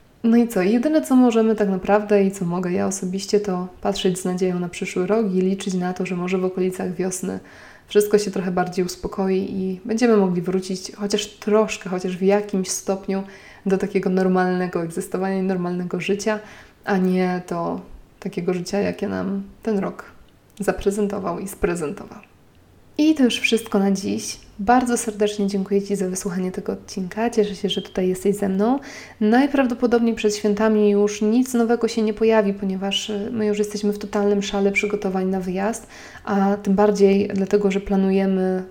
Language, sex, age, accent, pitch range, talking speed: Polish, female, 20-39, native, 190-210 Hz, 170 wpm